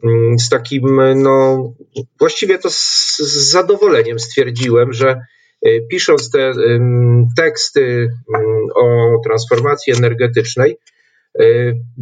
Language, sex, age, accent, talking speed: Polish, male, 40-59, native, 100 wpm